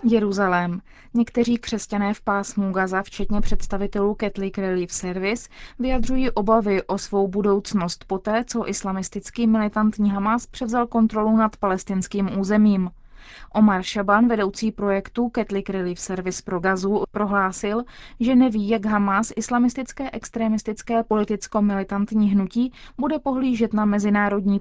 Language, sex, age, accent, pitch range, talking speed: Czech, female, 20-39, native, 195-225 Hz, 115 wpm